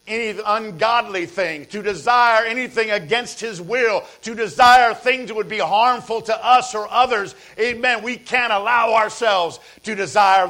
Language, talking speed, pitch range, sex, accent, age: English, 155 wpm, 185-230 Hz, male, American, 50-69